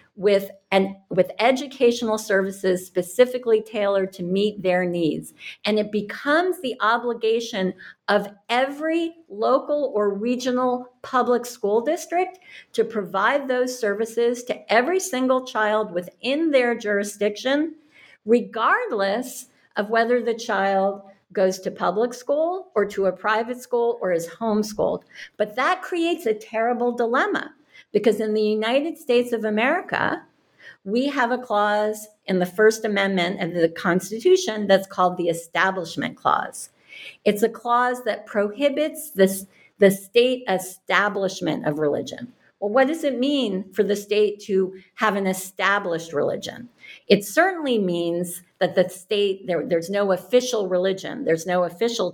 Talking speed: 135 wpm